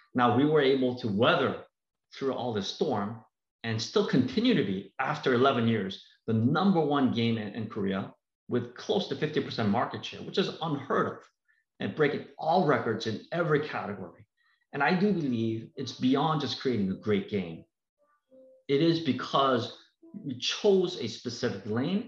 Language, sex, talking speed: English, male, 165 wpm